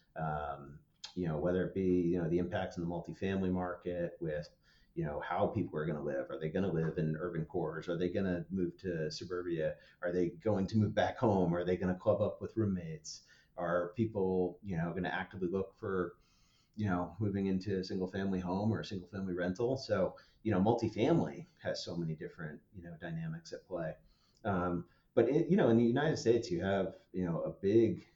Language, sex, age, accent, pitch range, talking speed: English, male, 40-59, American, 85-95 Hz, 220 wpm